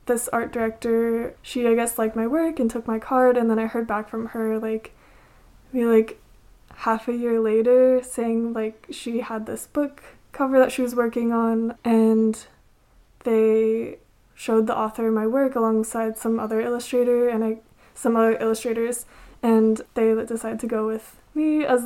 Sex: female